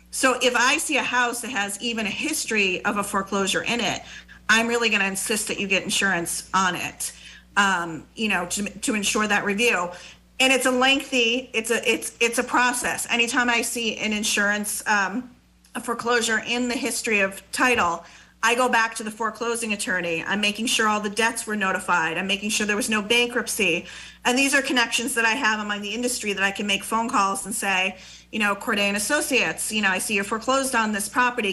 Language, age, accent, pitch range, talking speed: English, 40-59, American, 200-240 Hz, 210 wpm